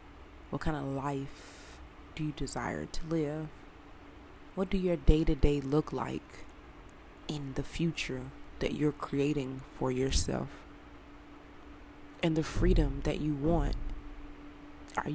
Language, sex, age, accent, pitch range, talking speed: English, female, 20-39, American, 140-160 Hz, 120 wpm